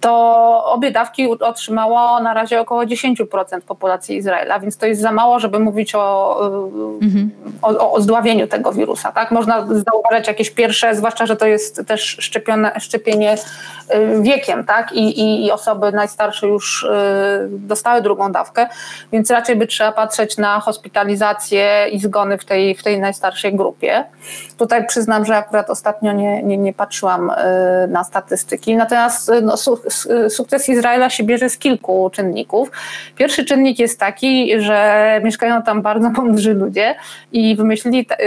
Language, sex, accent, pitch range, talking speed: Polish, female, native, 205-235 Hz, 145 wpm